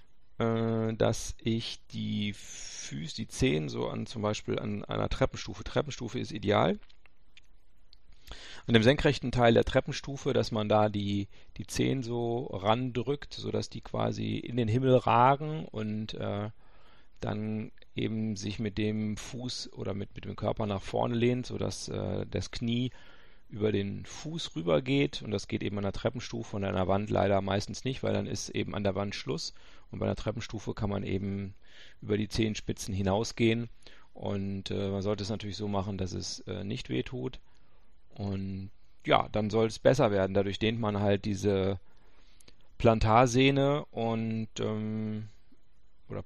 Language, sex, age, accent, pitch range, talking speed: German, male, 40-59, German, 100-115 Hz, 160 wpm